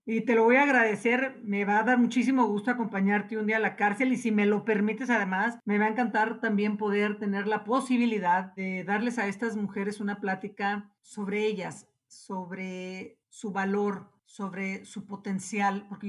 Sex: female